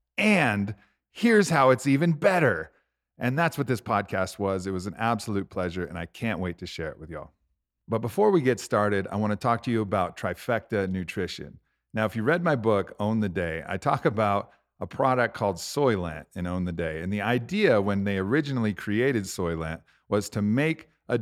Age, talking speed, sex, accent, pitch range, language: 40-59, 205 wpm, male, American, 95-130 Hz, English